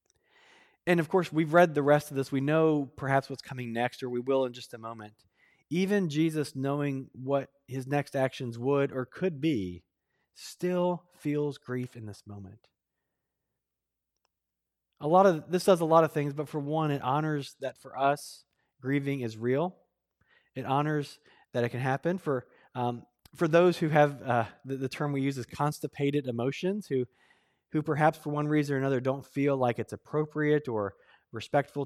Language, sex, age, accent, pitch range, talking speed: English, male, 20-39, American, 120-150 Hz, 180 wpm